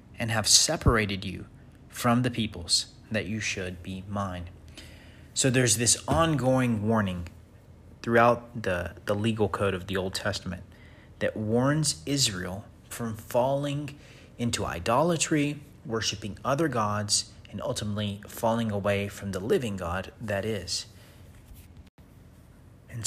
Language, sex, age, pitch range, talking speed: English, male, 30-49, 95-115 Hz, 120 wpm